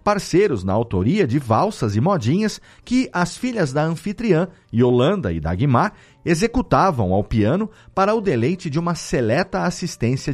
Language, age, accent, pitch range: Portuguese, 40-59, Brazilian, 110-175 Hz